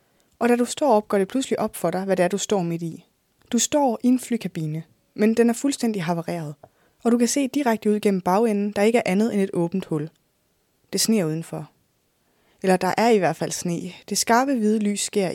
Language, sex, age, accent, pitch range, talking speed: Danish, female, 20-39, native, 170-220 Hz, 230 wpm